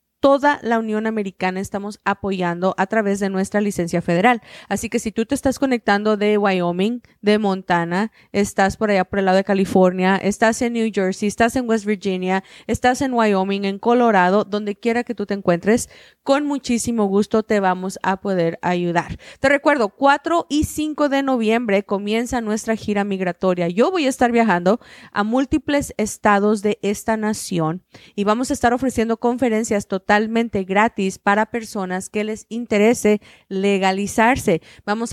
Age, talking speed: 20-39, 165 wpm